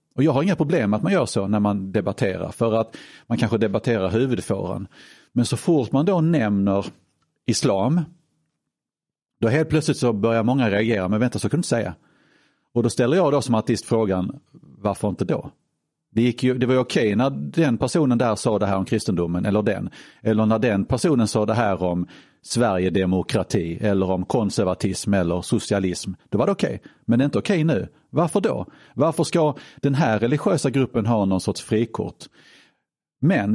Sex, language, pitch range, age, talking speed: male, Swedish, 105-135 Hz, 40-59, 185 wpm